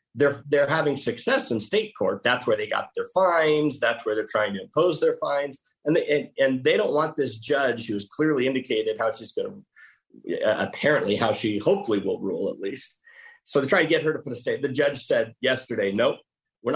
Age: 40-59